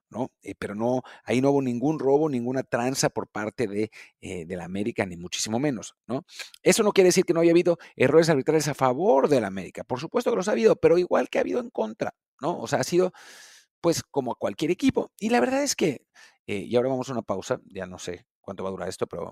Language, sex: English, male